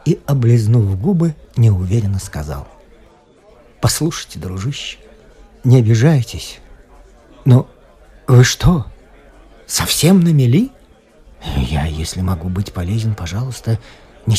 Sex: male